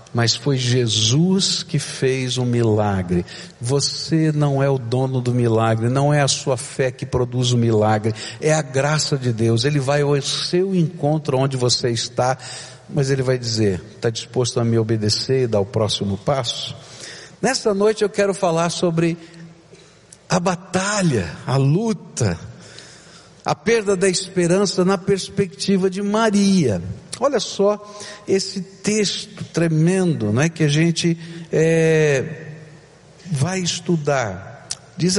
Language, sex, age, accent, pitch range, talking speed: Portuguese, male, 60-79, Brazilian, 130-180 Hz, 135 wpm